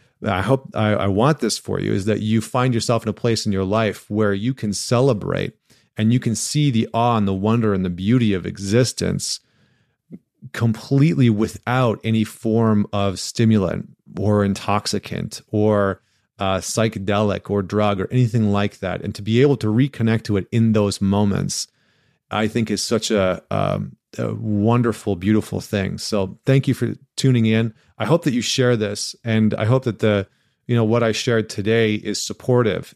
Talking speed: 180 wpm